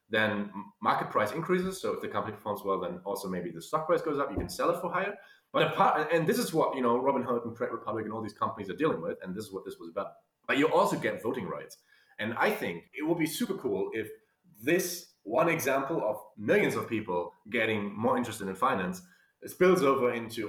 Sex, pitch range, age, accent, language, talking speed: male, 105-150 Hz, 30-49, German, English, 235 wpm